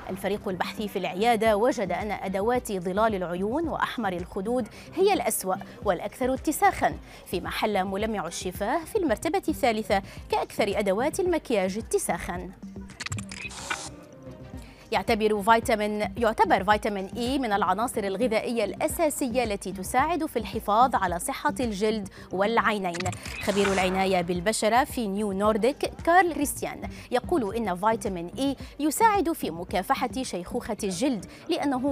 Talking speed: 115 wpm